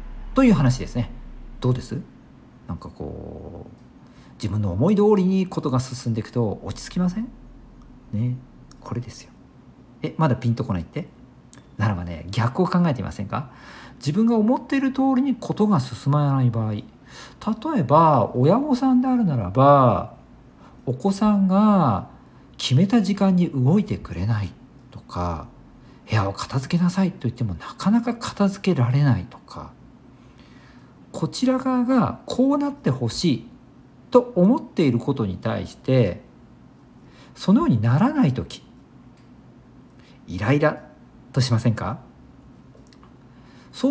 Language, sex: Japanese, male